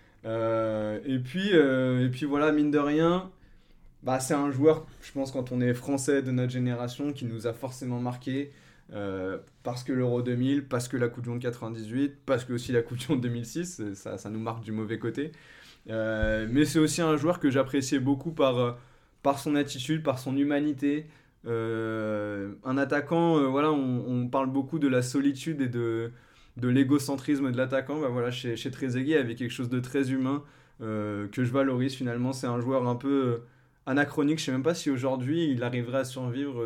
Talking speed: 195 wpm